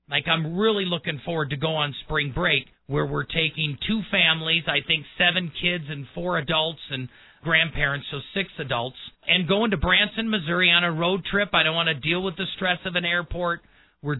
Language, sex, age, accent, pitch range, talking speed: English, male, 40-59, American, 135-175 Hz, 205 wpm